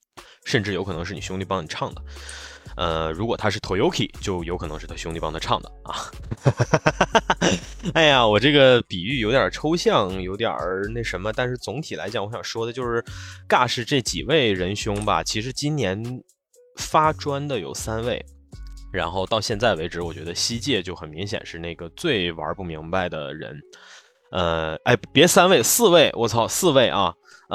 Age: 20-39